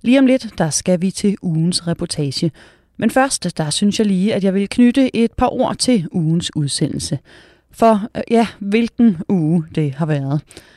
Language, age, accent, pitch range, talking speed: Danish, 30-49, native, 150-215 Hz, 180 wpm